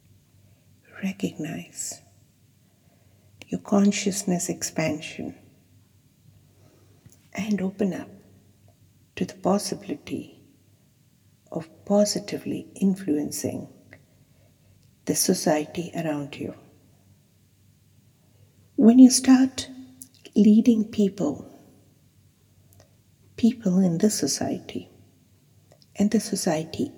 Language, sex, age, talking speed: English, female, 60-79, 65 wpm